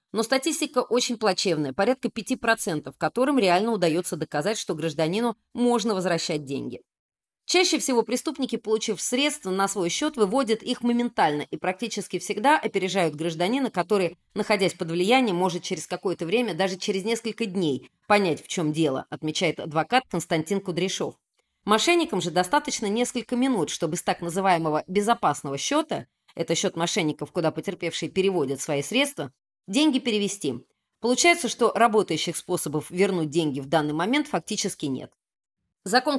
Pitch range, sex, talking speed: 165-230 Hz, female, 140 wpm